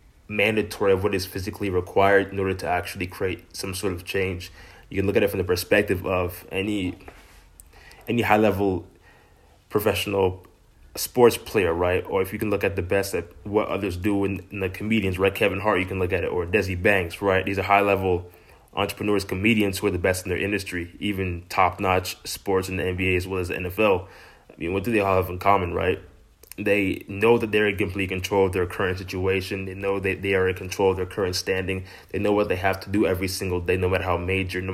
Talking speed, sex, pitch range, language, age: 225 wpm, male, 90-100 Hz, English, 20-39